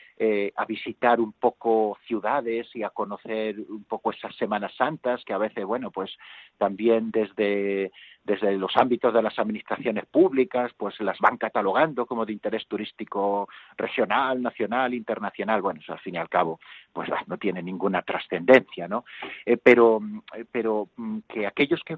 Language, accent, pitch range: Spanish, Spanish, 105-130 Hz